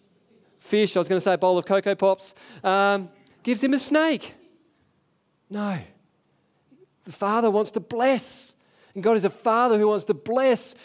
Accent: Australian